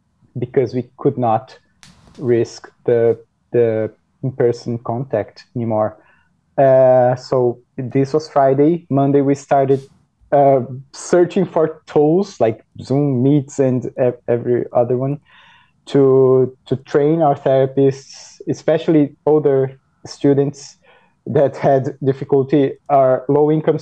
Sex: male